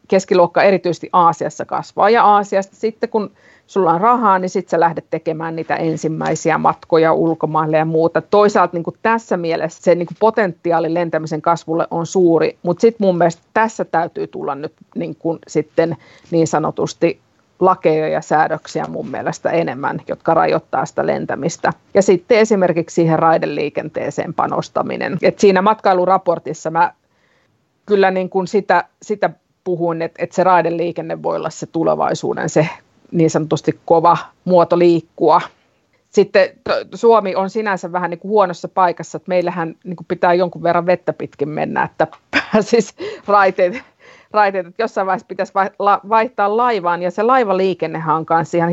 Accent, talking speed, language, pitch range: native, 150 wpm, Finnish, 165-200 Hz